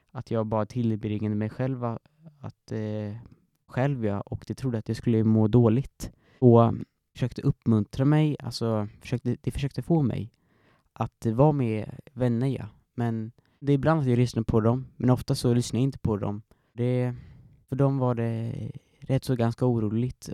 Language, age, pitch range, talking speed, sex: Swedish, 20-39, 110-130 Hz, 175 wpm, male